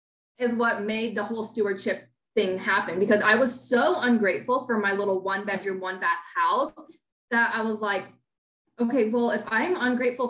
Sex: female